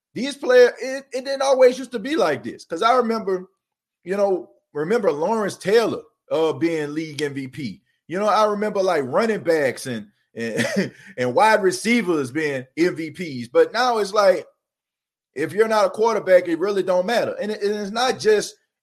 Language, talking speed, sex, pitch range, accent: English, 170 wpm, male, 145-215 Hz, American